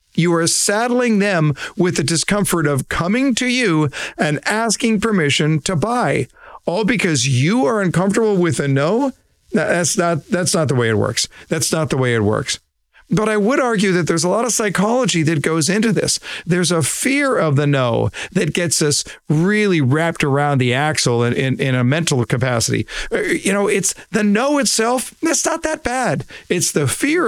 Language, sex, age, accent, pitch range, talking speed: English, male, 50-69, American, 145-205 Hz, 185 wpm